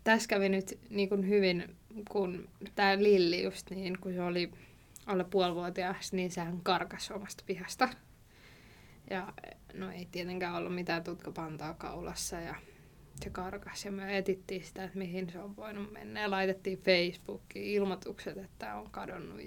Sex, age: female, 20-39